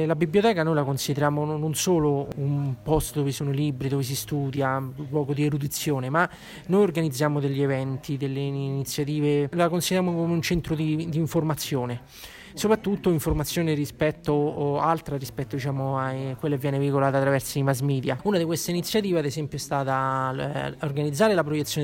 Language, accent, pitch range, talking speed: Italian, native, 140-160 Hz, 170 wpm